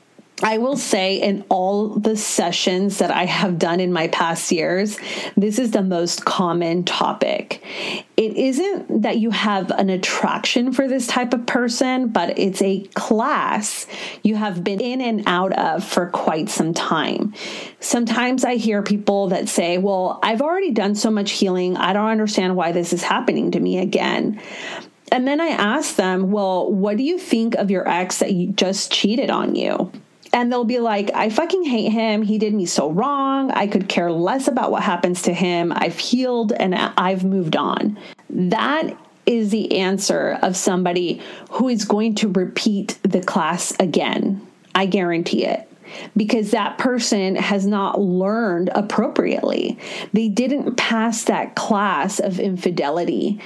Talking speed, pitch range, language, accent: 165 wpm, 190-230 Hz, English, American